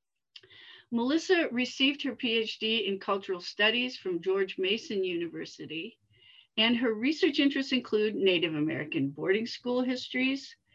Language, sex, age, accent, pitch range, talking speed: English, female, 50-69, American, 195-270 Hz, 115 wpm